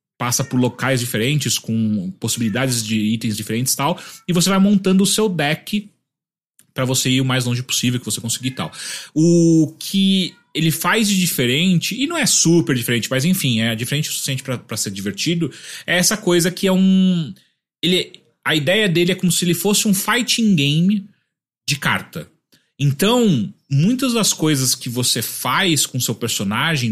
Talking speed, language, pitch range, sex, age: 180 wpm, Portuguese, 125-180 Hz, male, 30-49